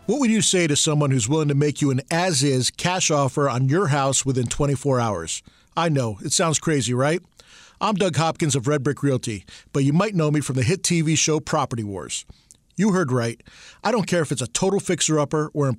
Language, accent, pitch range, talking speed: English, American, 140-185 Hz, 225 wpm